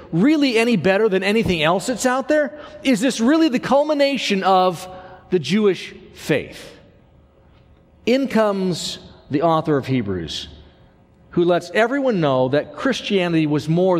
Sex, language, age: male, English, 50-69